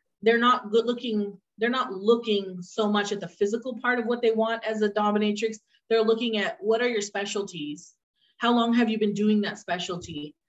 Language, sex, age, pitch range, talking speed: English, female, 30-49, 195-235 Hz, 200 wpm